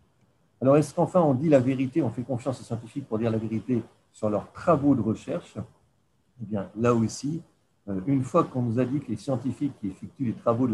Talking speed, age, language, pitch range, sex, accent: 220 wpm, 60-79, French, 105-135 Hz, male, French